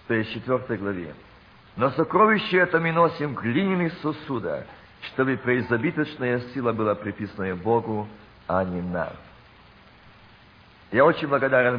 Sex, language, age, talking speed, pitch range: male, Russian, 50-69, 100 wpm, 110-135 Hz